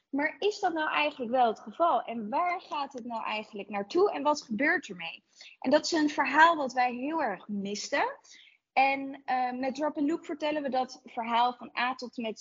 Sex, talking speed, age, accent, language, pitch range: female, 210 wpm, 20-39, Dutch, Dutch, 220-290 Hz